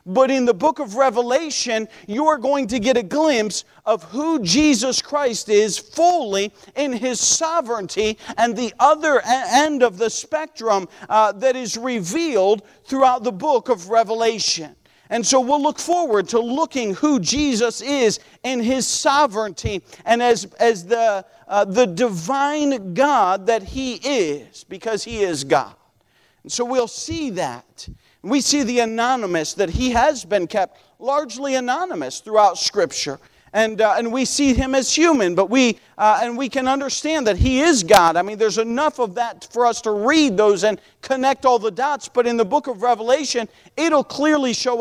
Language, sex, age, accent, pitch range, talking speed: English, male, 40-59, American, 215-270 Hz, 170 wpm